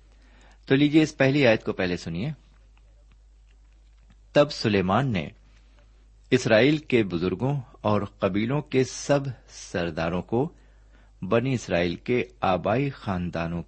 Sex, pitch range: male, 95-130 Hz